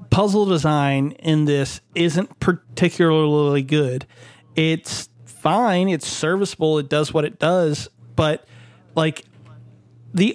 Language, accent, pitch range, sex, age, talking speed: English, American, 135-180 Hz, male, 30-49, 110 wpm